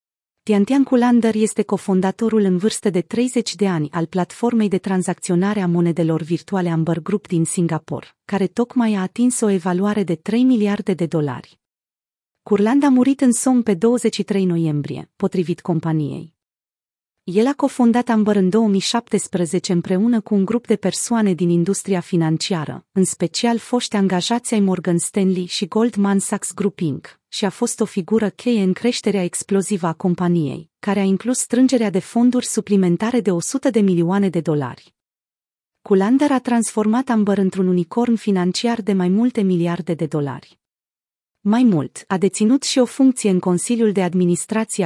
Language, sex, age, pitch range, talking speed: Romanian, female, 30-49, 175-225 Hz, 160 wpm